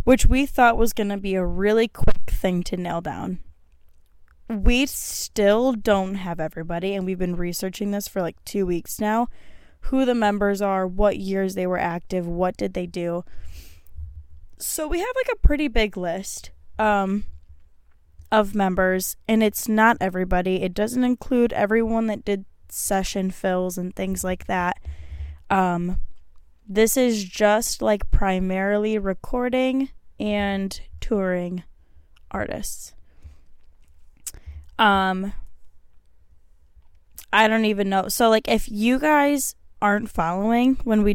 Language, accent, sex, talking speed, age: English, American, female, 135 wpm, 10-29